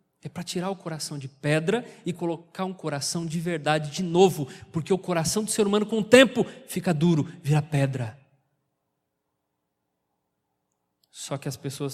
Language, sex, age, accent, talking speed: Portuguese, male, 20-39, Brazilian, 160 wpm